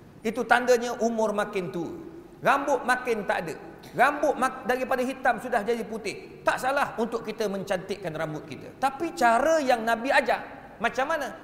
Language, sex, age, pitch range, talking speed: Malay, male, 40-59, 200-260 Hz, 150 wpm